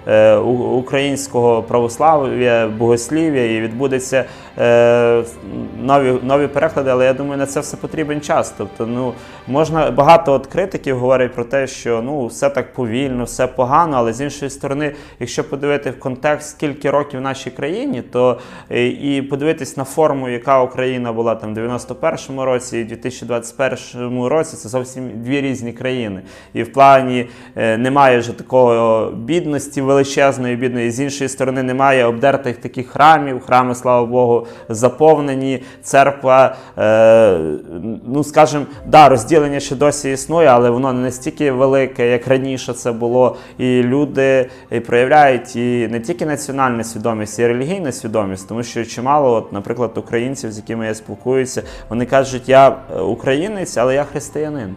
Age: 20-39